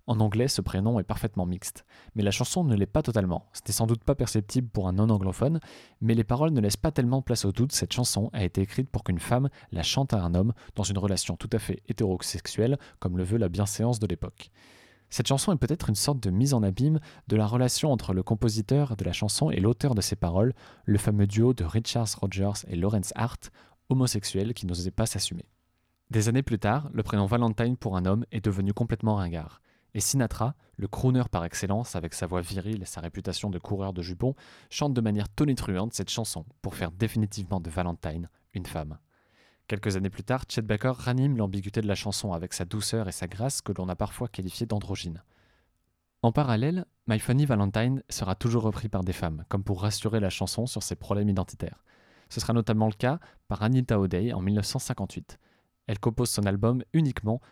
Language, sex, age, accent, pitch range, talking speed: French, male, 20-39, French, 95-120 Hz, 210 wpm